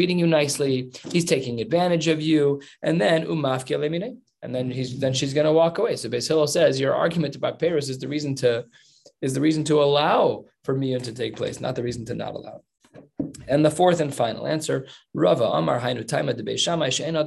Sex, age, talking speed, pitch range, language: male, 20-39, 185 wpm, 125-150 Hz, English